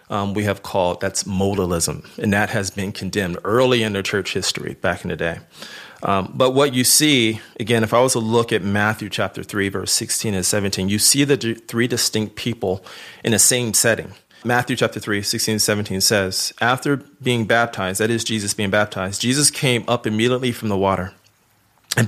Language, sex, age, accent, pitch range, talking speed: English, male, 40-59, American, 100-115 Hz, 200 wpm